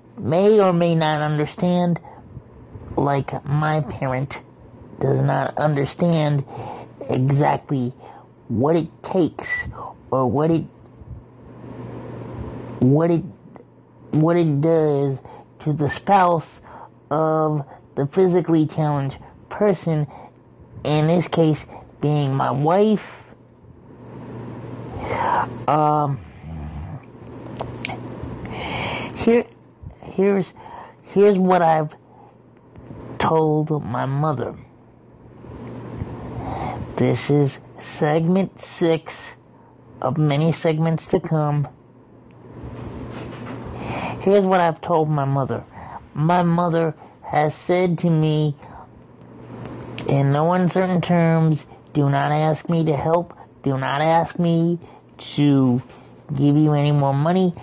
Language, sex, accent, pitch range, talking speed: English, male, American, 135-165 Hz, 90 wpm